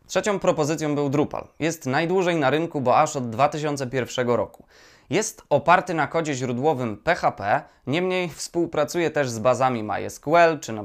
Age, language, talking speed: 20-39, Polish, 150 wpm